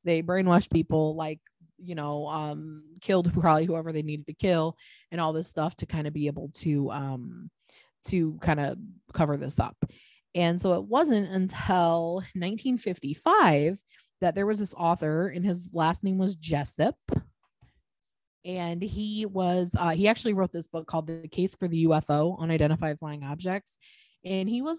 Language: English